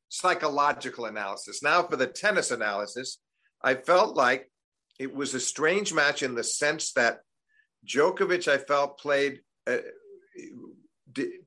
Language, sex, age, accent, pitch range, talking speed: English, male, 50-69, American, 115-160 Hz, 125 wpm